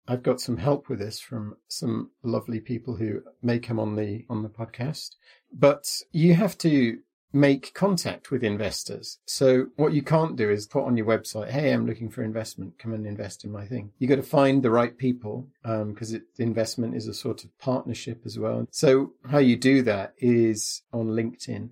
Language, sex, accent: English, male, British